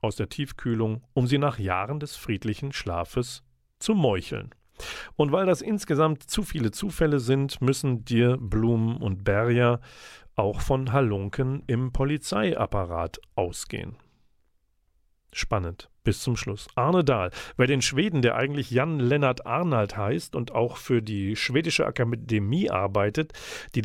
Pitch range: 105-135 Hz